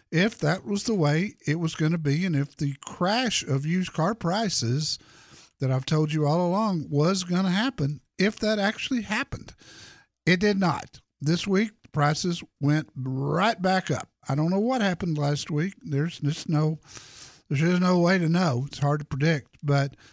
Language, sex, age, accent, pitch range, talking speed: English, male, 60-79, American, 140-195 Hz, 180 wpm